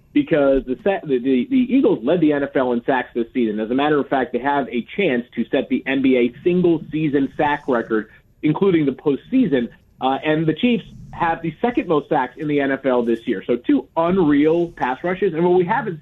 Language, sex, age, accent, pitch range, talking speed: English, male, 40-59, American, 130-175 Hz, 200 wpm